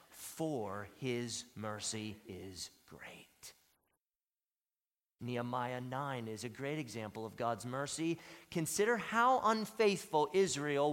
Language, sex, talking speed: English, male, 100 wpm